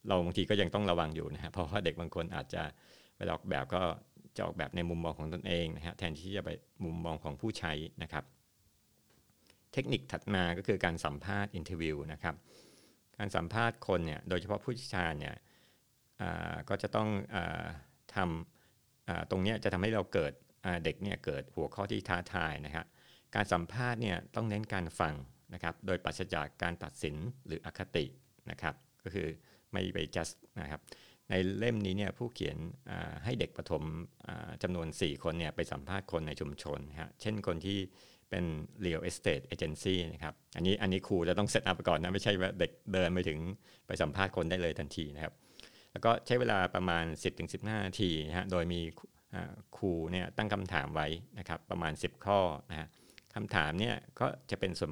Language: Thai